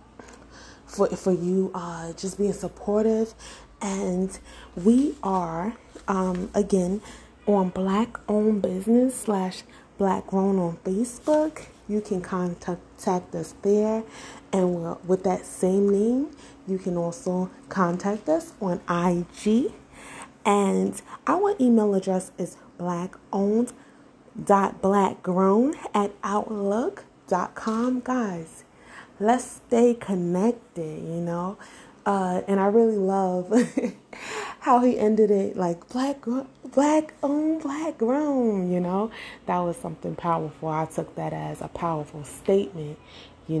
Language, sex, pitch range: English, female, 175-225 Hz